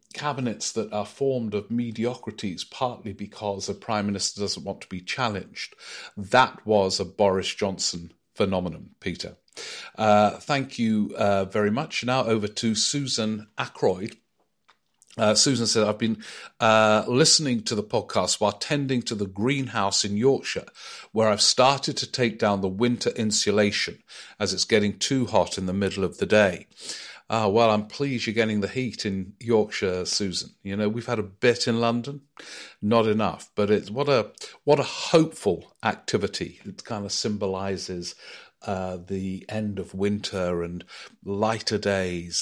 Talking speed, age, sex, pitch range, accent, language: 160 wpm, 50-69, male, 100-120 Hz, British, English